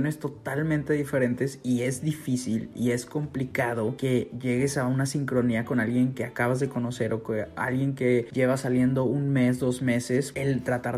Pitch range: 120-140 Hz